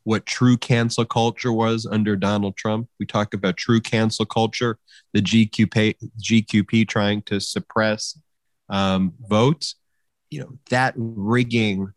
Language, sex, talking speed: English, male, 130 wpm